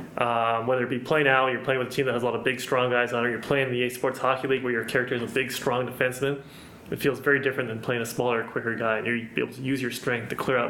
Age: 20-39